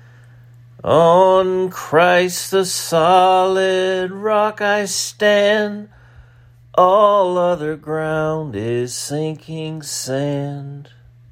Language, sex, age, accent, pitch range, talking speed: English, male, 40-59, American, 105-130 Hz, 70 wpm